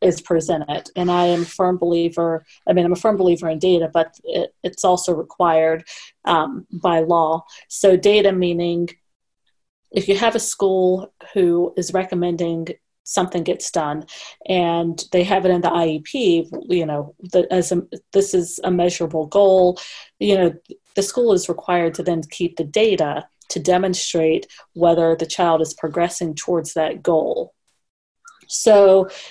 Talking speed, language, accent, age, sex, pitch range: 160 wpm, English, American, 30-49, female, 165-185 Hz